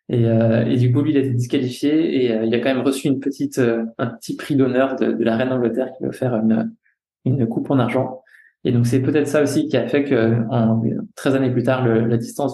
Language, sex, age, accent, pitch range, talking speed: French, male, 20-39, French, 120-135 Hz, 270 wpm